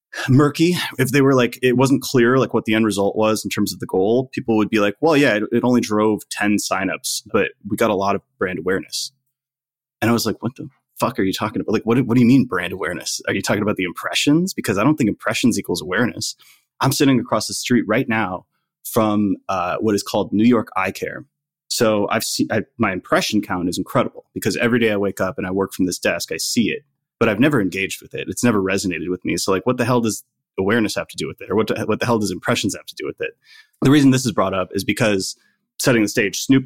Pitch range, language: 100-130 Hz, English